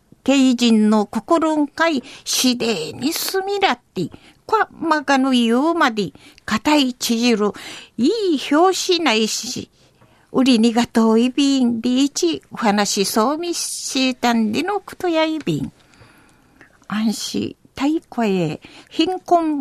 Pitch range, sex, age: 230-310 Hz, female, 50-69